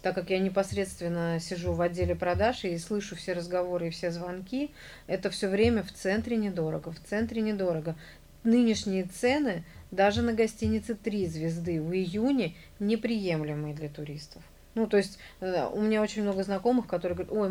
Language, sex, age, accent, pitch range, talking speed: Russian, female, 30-49, native, 165-210 Hz, 160 wpm